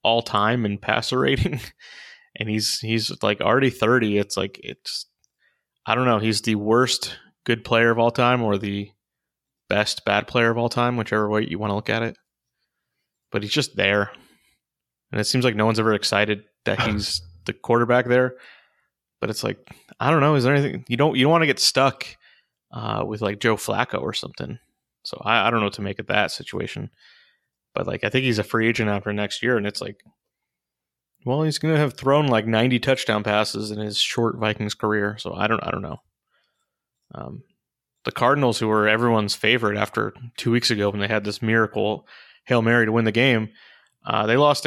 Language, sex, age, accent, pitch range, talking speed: English, male, 20-39, American, 105-120 Hz, 205 wpm